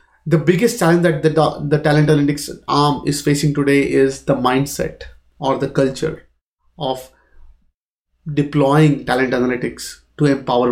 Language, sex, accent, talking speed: English, male, Indian, 140 wpm